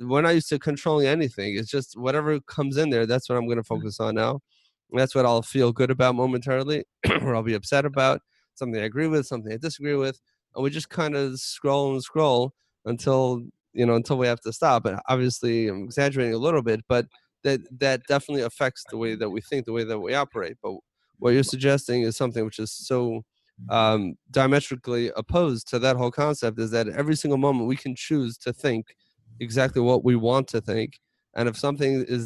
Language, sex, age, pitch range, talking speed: English, male, 20-39, 115-140 Hz, 215 wpm